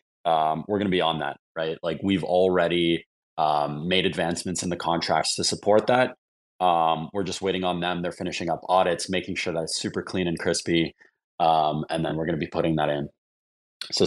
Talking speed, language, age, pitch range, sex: 195 wpm, English, 20-39, 80-95 Hz, male